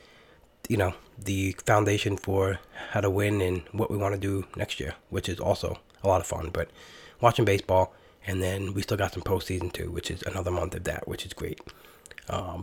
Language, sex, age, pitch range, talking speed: English, male, 20-39, 95-110 Hz, 210 wpm